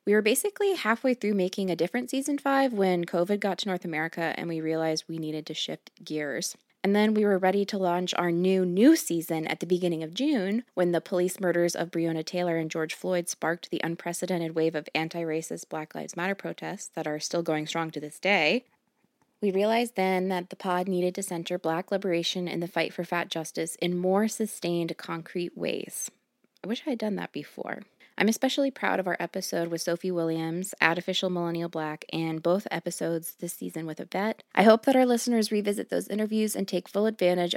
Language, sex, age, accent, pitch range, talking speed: English, female, 20-39, American, 165-215 Hz, 205 wpm